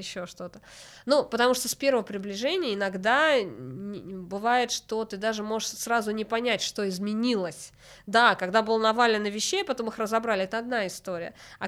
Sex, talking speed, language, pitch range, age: female, 160 wpm, Russian, 185-235 Hz, 20-39